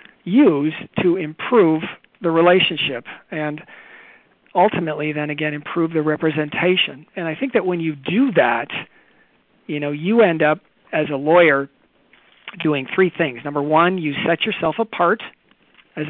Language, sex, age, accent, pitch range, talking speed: English, male, 50-69, American, 145-180 Hz, 140 wpm